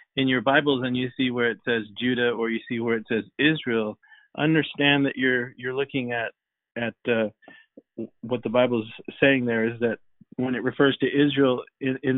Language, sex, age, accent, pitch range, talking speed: English, male, 50-69, American, 115-135 Hz, 195 wpm